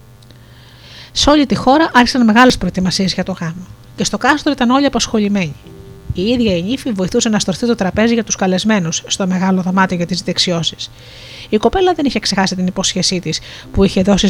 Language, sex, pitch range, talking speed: Greek, female, 175-235 Hz, 190 wpm